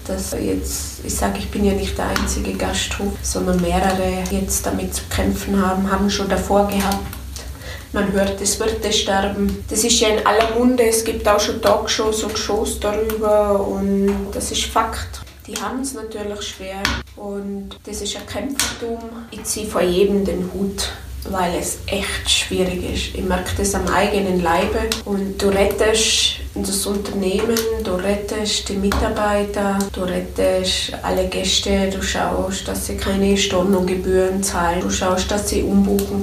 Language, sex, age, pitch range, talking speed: German, female, 20-39, 175-215 Hz, 165 wpm